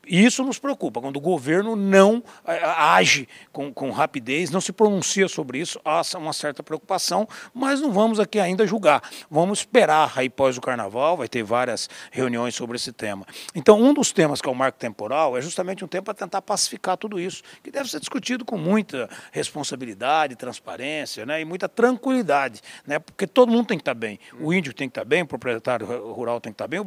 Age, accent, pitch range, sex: 60-79, Brazilian, 125-195 Hz, male